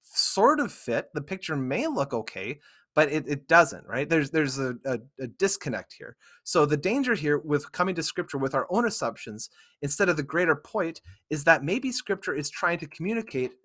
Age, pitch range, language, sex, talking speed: 30-49, 135-180 Hz, English, male, 200 wpm